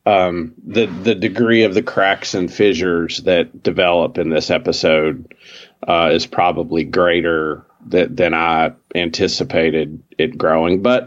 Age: 40-59